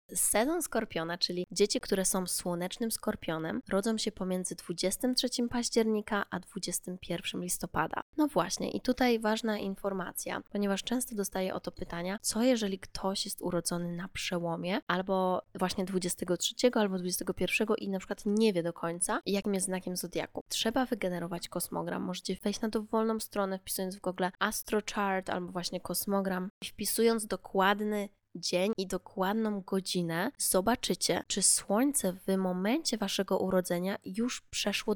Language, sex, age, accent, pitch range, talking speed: Polish, female, 20-39, native, 185-215 Hz, 145 wpm